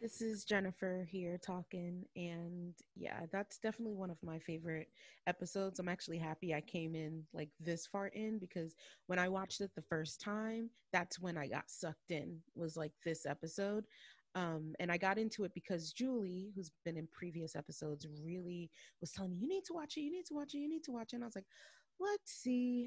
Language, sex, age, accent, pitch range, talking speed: English, female, 30-49, American, 170-220 Hz, 210 wpm